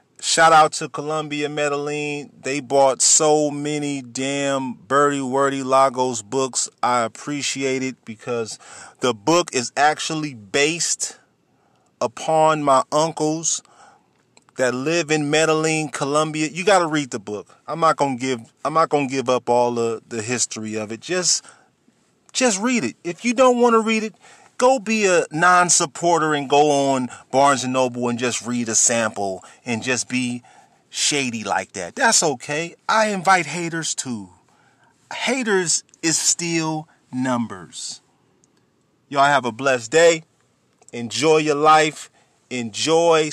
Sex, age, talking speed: male, 30-49, 140 wpm